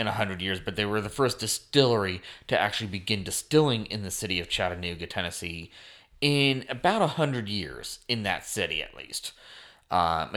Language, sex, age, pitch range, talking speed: English, male, 30-49, 95-115 Hz, 170 wpm